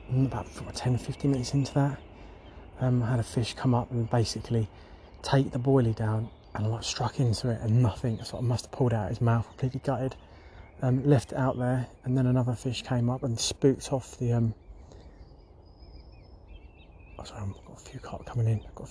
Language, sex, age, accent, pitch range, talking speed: English, male, 20-39, British, 90-125 Hz, 215 wpm